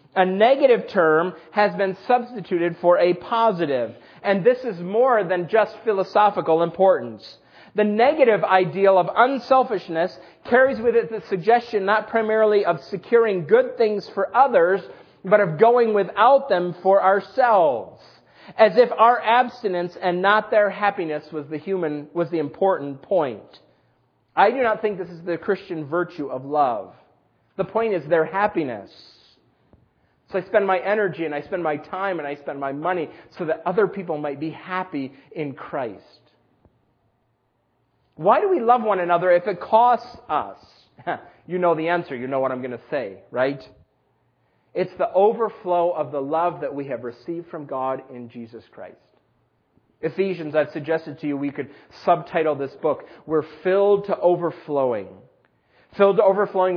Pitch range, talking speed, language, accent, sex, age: 155-210 Hz, 160 wpm, English, American, male, 40-59